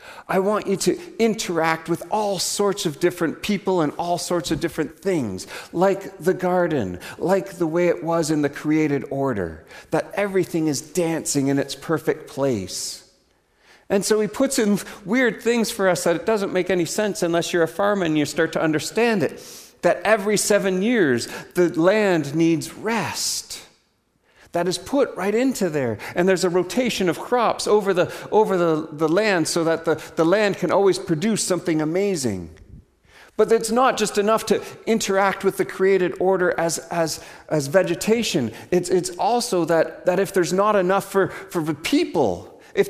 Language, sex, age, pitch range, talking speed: English, male, 40-59, 165-205 Hz, 180 wpm